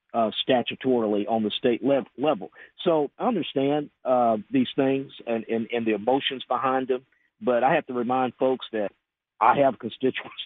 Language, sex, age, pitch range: English, male, 50-69, 115-135 Hz